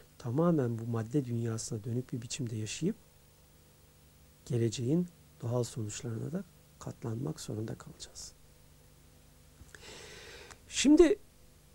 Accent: native